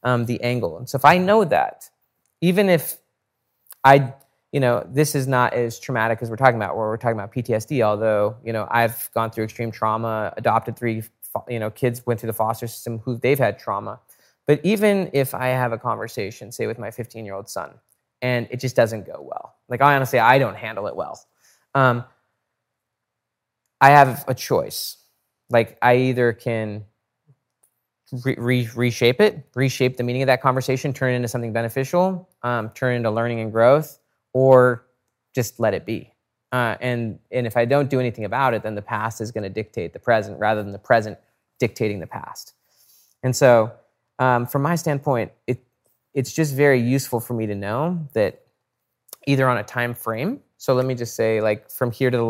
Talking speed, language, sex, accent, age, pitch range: 195 wpm, English, male, American, 20-39, 110-130 Hz